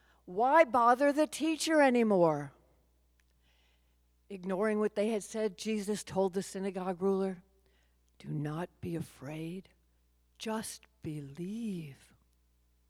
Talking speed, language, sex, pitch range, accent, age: 100 wpm, English, female, 130-200 Hz, American, 50-69